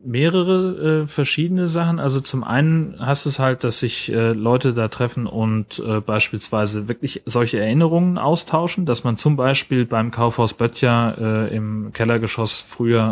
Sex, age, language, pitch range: male, 30-49, German, 110-140 Hz